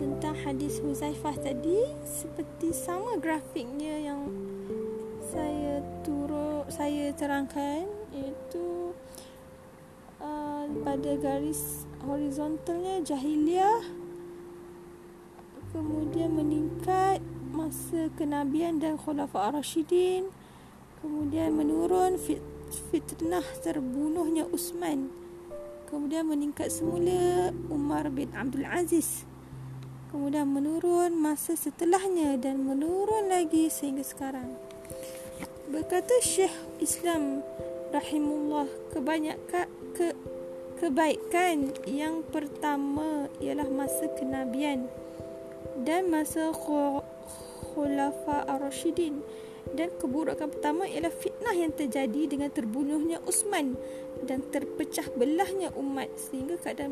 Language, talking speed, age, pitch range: Malay, 85 wpm, 20-39, 255-325 Hz